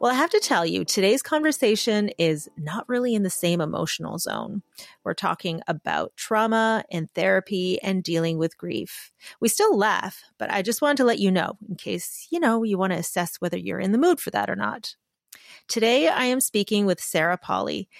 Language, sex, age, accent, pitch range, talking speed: English, female, 30-49, American, 175-225 Hz, 205 wpm